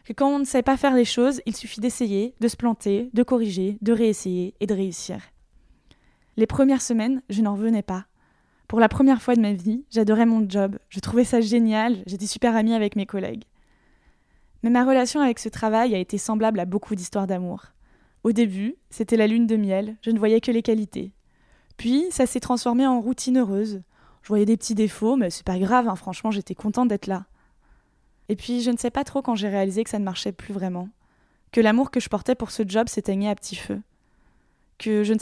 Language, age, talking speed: French, 20-39, 220 wpm